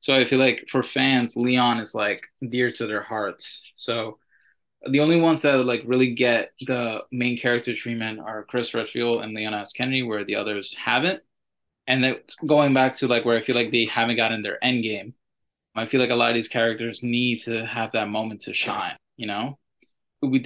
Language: English